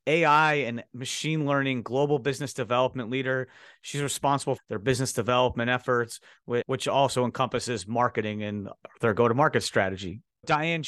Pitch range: 125-150 Hz